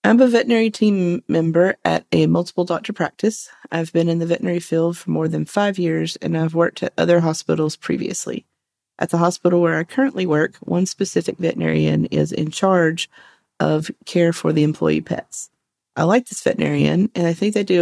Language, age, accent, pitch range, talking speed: English, 40-59, American, 150-175 Hz, 190 wpm